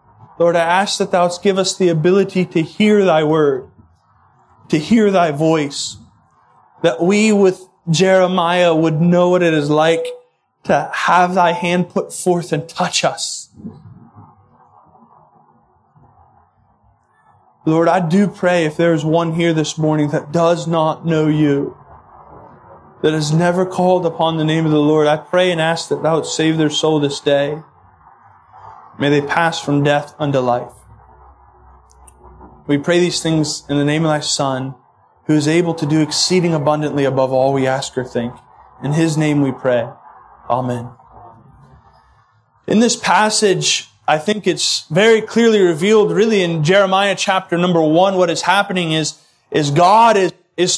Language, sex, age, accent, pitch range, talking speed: English, male, 20-39, American, 150-185 Hz, 155 wpm